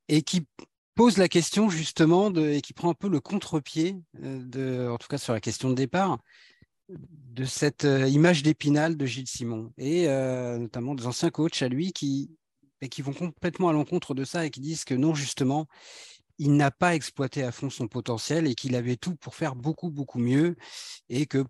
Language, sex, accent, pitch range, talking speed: French, male, French, 125-155 Hz, 200 wpm